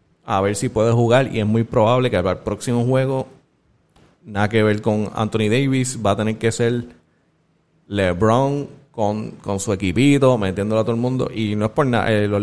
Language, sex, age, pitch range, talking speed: Spanish, male, 30-49, 105-135 Hz, 195 wpm